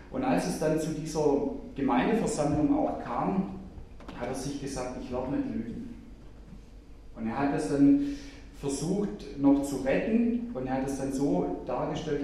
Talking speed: 160 wpm